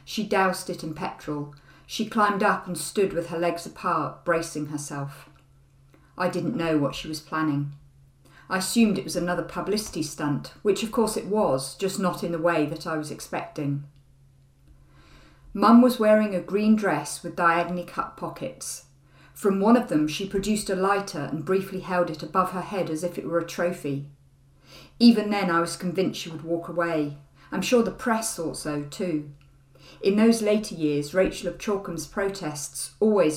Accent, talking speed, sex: British, 180 wpm, female